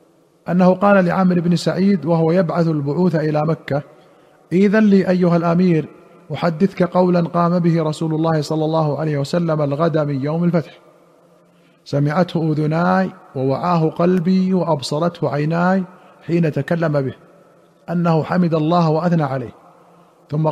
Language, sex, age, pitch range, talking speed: Arabic, male, 50-69, 150-175 Hz, 125 wpm